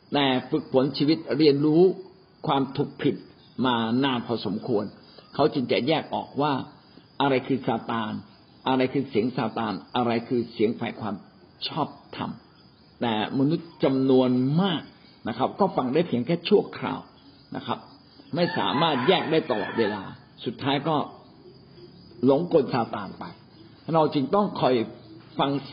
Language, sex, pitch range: Thai, male, 125-170 Hz